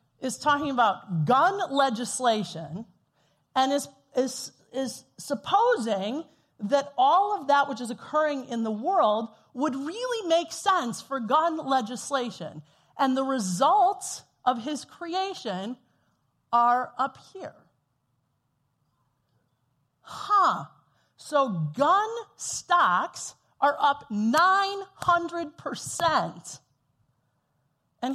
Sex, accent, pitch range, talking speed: female, American, 185-300 Hz, 95 wpm